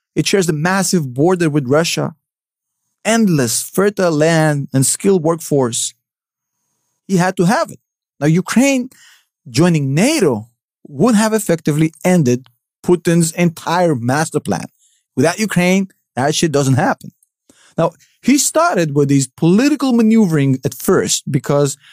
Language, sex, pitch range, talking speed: English, male, 140-195 Hz, 125 wpm